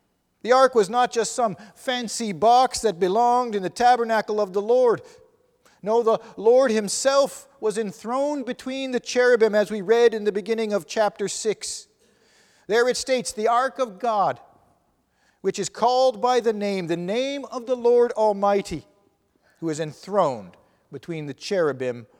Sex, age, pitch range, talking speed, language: male, 40-59, 185-240 Hz, 160 wpm, English